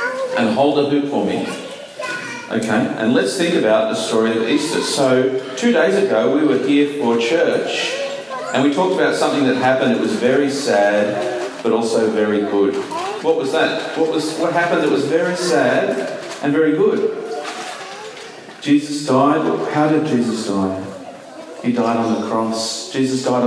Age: 40-59